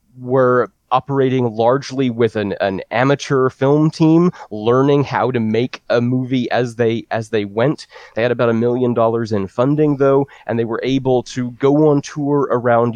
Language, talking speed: English, 175 wpm